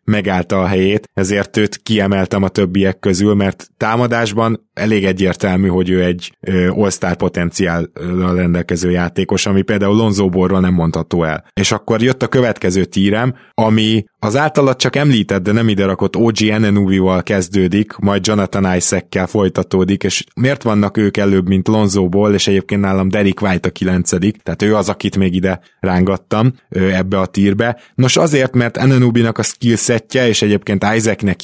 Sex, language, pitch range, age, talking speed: male, Hungarian, 95-105 Hz, 20-39, 155 wpm